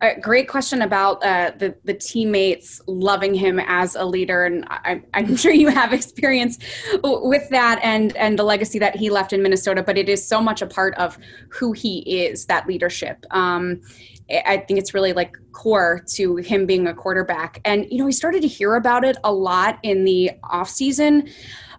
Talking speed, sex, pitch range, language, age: 195 wpm, female, 185-230 Hz, English, 20-39